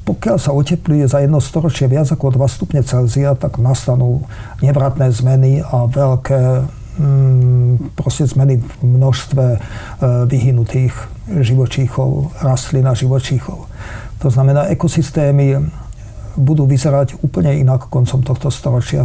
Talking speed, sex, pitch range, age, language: 110 wpm, male, 125-140 Hz, 50-69, Slovak